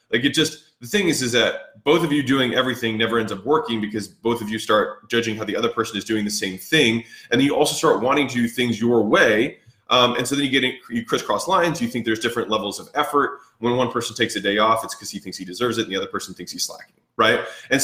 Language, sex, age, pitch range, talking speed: English, male, 20-39, 115-155 Hz, 280 wpm